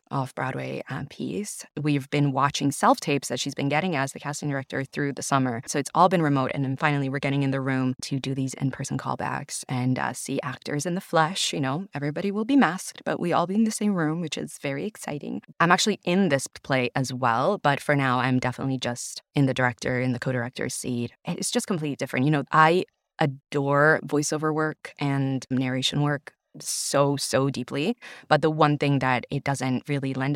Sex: female